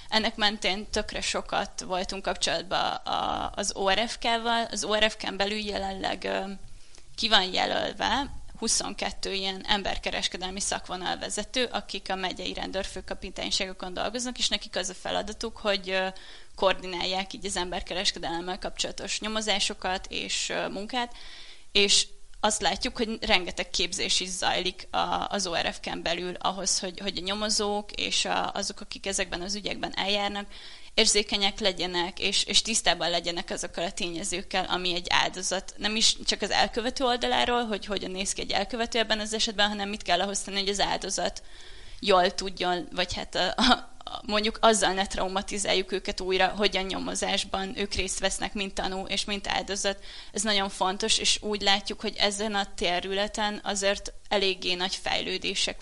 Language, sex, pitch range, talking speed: Hungarian, female, 185-210 Hz, 140 wpm